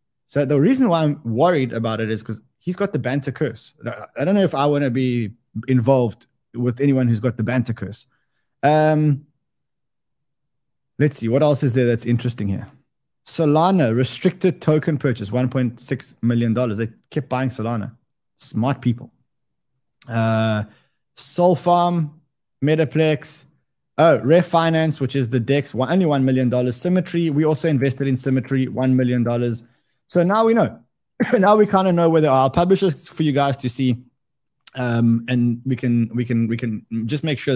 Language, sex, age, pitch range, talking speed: English, male, 20-39, 120-155 Hz, 160 wpm